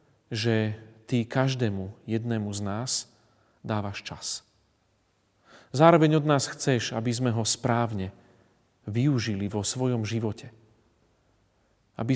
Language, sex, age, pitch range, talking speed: Slovak, male, 40-59, 100-125 Hz, 105 wpm